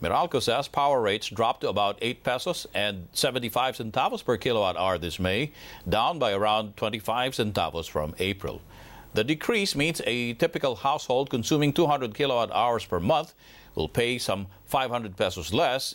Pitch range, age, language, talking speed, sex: 105-140 Hz, 50-69, English, 160 wpm, male